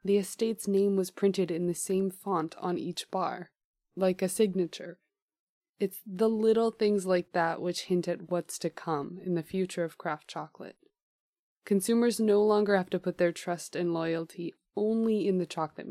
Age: 20-39